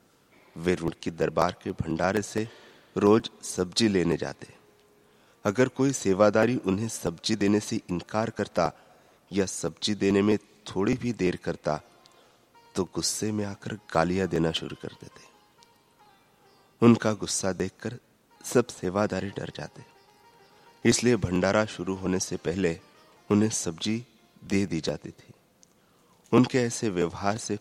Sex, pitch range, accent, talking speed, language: male, 90-115 Hz, native, 130 wpm, Hindi